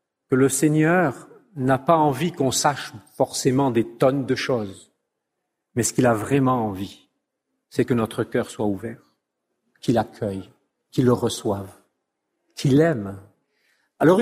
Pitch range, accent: 140-210 Hz, French